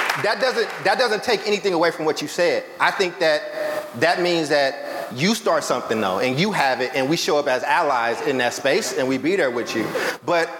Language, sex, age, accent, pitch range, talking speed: English, male, 30-49, American, 145-185 Hz, 230 wpm